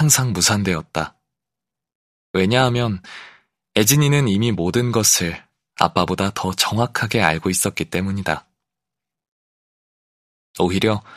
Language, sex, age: Korean, male, 20-39